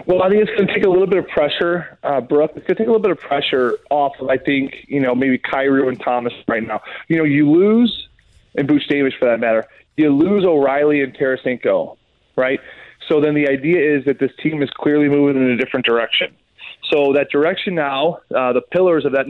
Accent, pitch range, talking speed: American, 135-175 Hz, 235 wpm